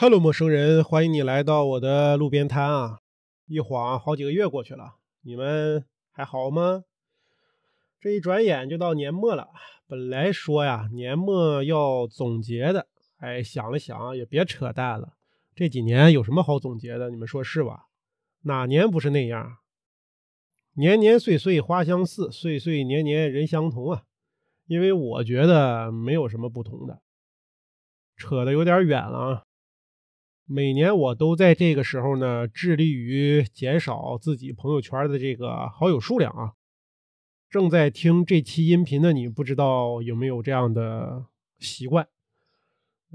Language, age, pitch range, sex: Chinese, 30-49, 125-165 Hz, male